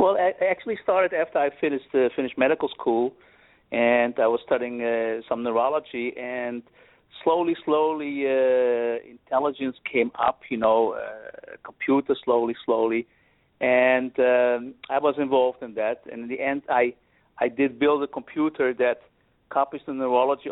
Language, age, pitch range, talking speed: English, 50-69, 120-155 Hz, 150 wpm